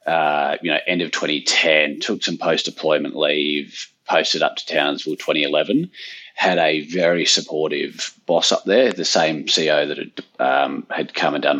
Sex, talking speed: male, 165 wpm